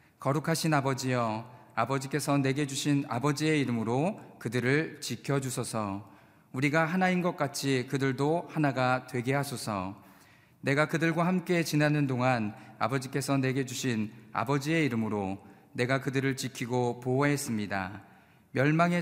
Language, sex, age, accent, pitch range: Korean, male, 40-59, native, 120-150 Hz